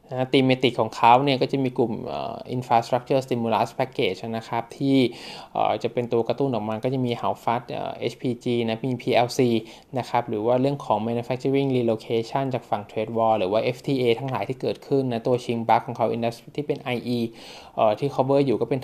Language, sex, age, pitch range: Thai, male, 20-39, 115-135 Hz